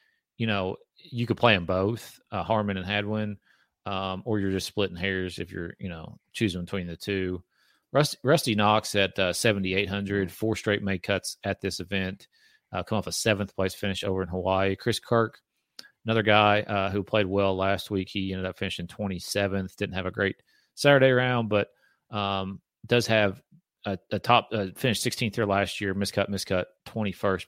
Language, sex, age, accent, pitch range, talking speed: English, male, 30-49, American, 95-110 Hz, 185 wpm